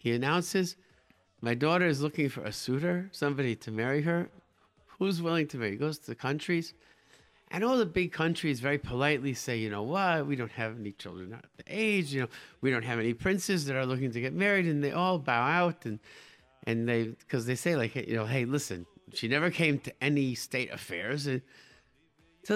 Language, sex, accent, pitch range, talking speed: English, male, American, 120-165 Hz, 205 wpm